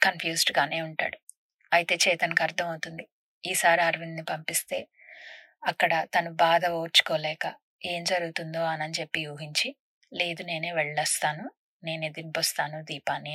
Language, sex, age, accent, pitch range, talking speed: Telugu, female, 20-39, native, 165-210 Hz, 105 wpm